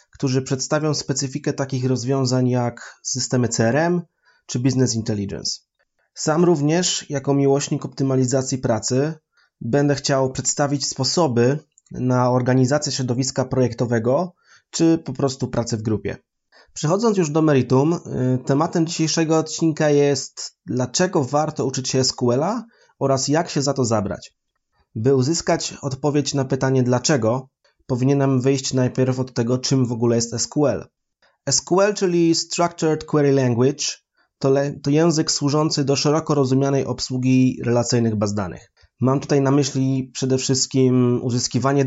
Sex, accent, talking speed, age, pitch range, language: male, native, 130 wpm, 20-39, 125-150 Hz, Polish